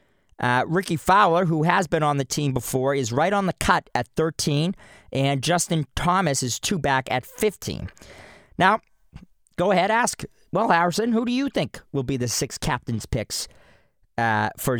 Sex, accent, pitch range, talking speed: male, American, 135-175 Hz, 175 wpm